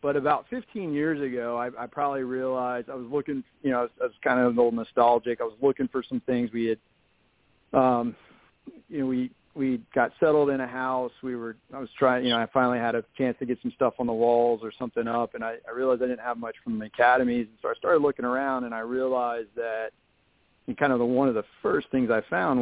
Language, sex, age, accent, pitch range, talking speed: English, male, 40-59, American, 115-130 Hz, 250 wpm